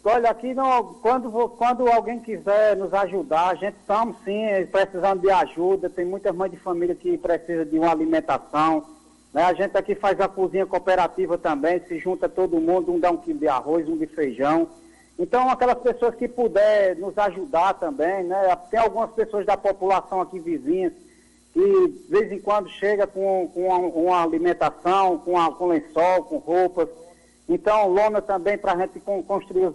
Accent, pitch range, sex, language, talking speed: Brazilian, 180-225 Hz, male, Portuguese, 180 wpm